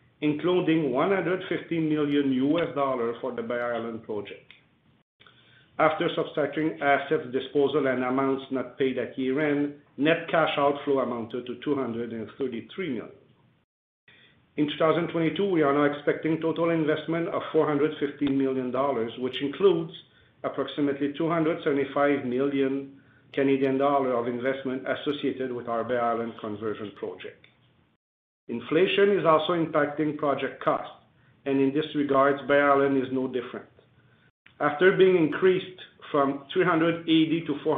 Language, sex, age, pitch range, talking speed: English, male, 50-69, 130-160 Hz, 125 wpm